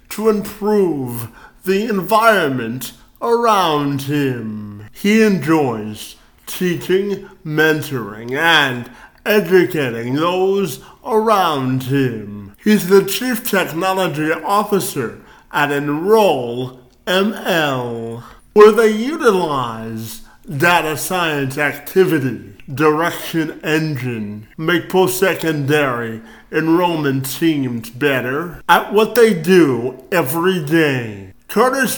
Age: 50-69